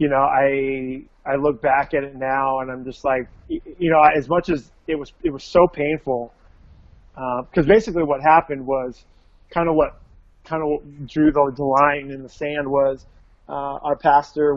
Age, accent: 30-49, American